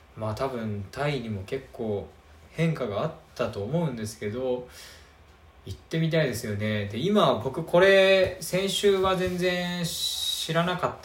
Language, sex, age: Japanese, male, 20-39